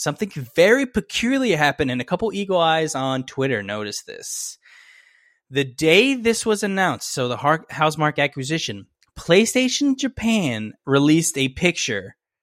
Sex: male